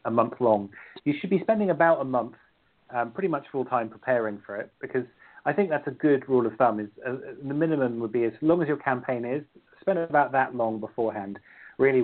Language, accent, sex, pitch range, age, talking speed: English, British, male, 115-140 Hz, 30-49, 220 wpm